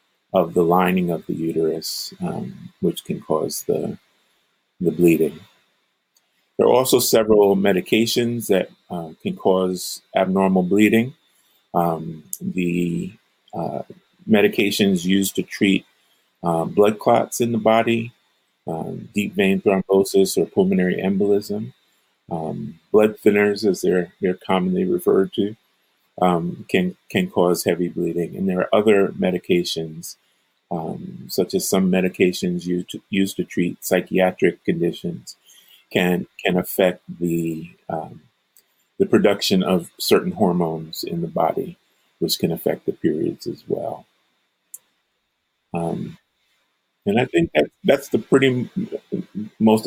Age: 30-49